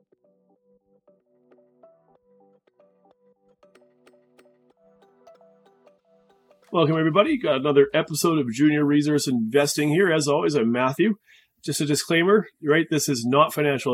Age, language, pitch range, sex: 30-49, English, 135-175 Hz, male